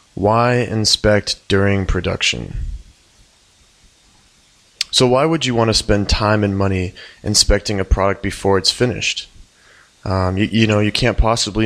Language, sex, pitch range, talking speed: English, male, 100-110 Hz, 140 wpm